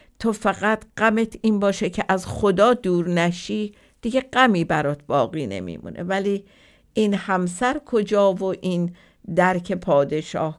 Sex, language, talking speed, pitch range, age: female, Persian, 130 wpm, 175-215 Hz, 50-69